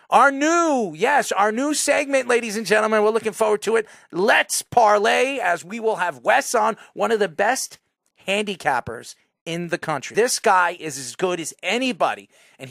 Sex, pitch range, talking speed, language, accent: male, 155-220 Hz, 180 wpm, English, American